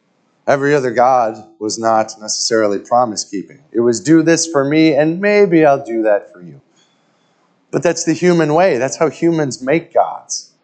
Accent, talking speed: American, 175 wpm